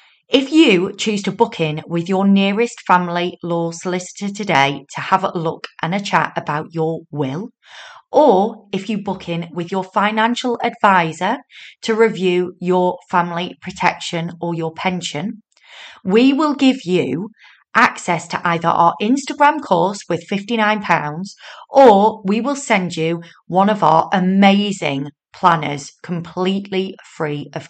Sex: female